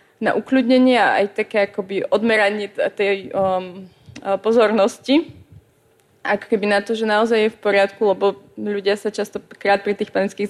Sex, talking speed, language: female, 150 wpm, Slovak